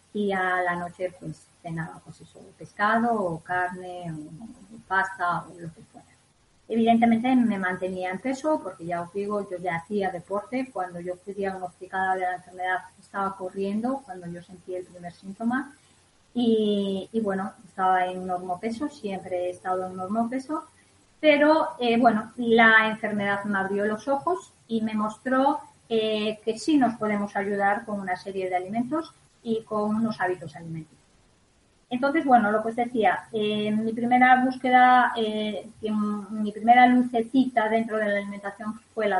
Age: 20-39